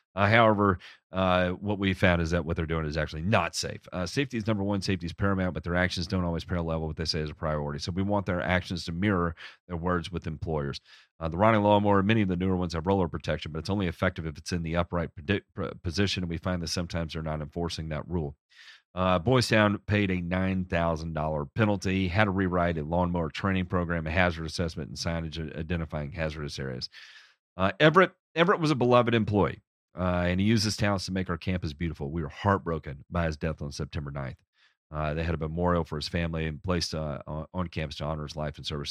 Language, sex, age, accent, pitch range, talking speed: English, male, 40-59, American, 80-100 Hz, 225 wpm